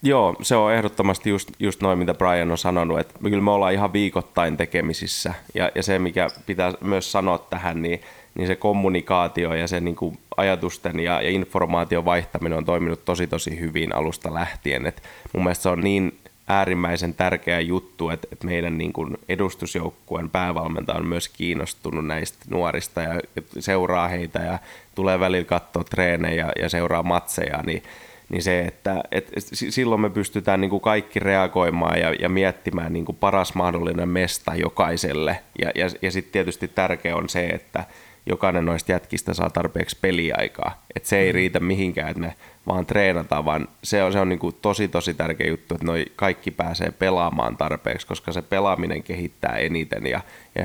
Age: 20-39